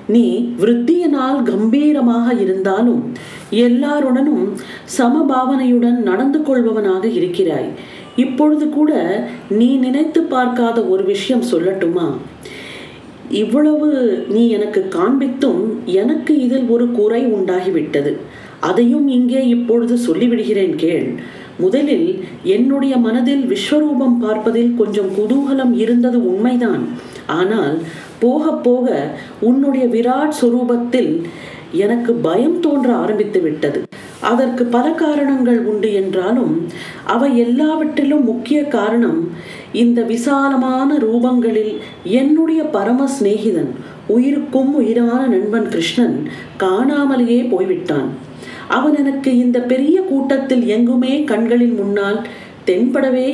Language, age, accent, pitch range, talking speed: Tamil, 40-59, native, 230-275 Hz, 90 wpm